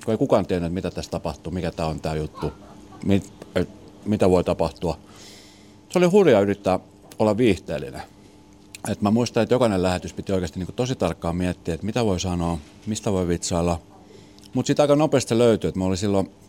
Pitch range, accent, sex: 85-100 Hz, native, male